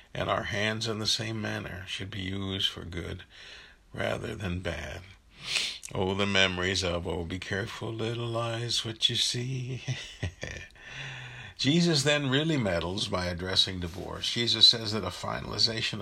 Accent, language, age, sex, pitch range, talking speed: American, English, 60-79, male, 95-115 Hz, 145 wpm